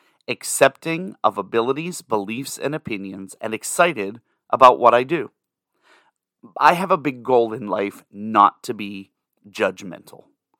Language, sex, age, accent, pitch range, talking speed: English, male, 30-49, American, 105-150 Hz, 130 wpm